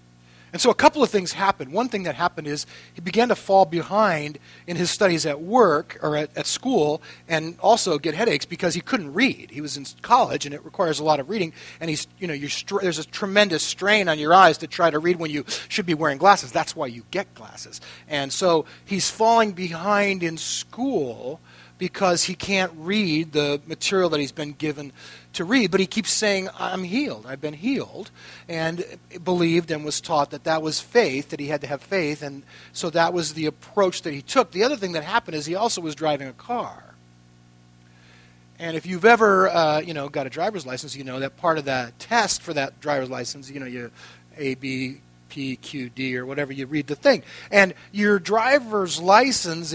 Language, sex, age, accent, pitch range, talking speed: English, male, 40-59, American, 145-190 Hz, 215 wpm